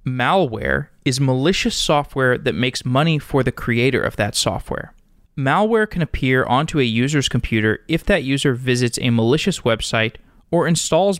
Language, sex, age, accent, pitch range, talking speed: English, male, 20-39, American, 120-155 Hz, 155 wpm